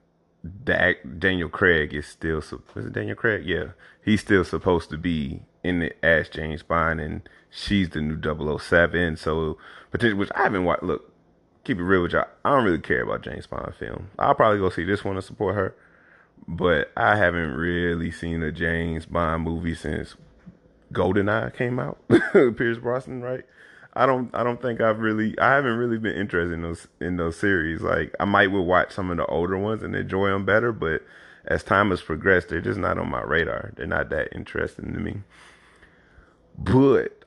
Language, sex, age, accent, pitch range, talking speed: English, male, 30-49, American, 80-105 Hz, 190 wpm